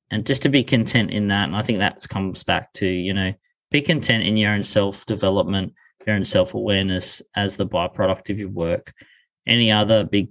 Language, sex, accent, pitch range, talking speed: English, male, Australian, 100-115 Hz, 210 wpm